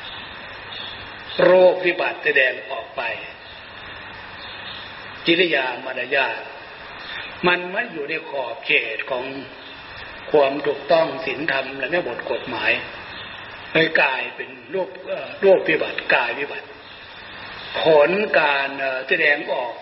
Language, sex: Thai, male